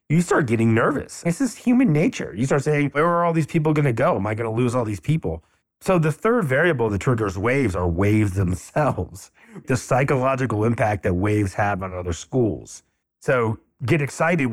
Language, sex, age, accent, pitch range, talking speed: English, male, 30-49, American, 95-125 Hz, 200 wpm